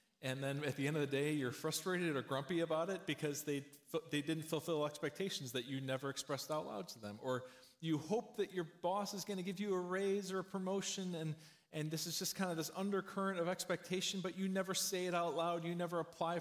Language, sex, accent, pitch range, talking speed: English, male, American, 130-170 Hz, 240 wpm